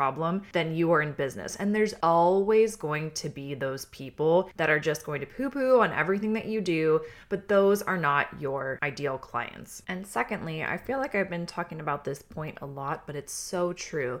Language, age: English, 20-39